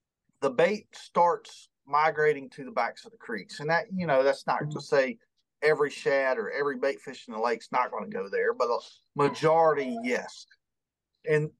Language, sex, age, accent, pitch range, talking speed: English, male, 30-49, American, 135-205 Hz, 195 wpm